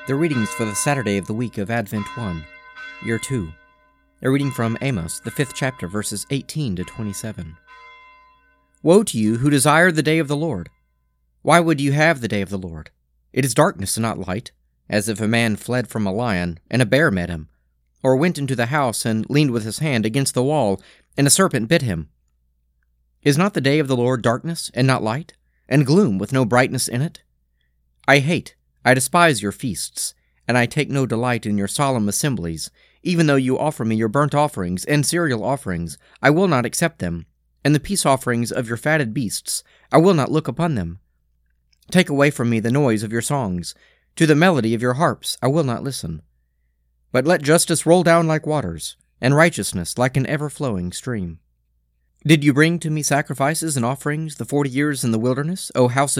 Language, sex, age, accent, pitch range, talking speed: English, male, 40-59, American, 100-150 Hz, 205 wpm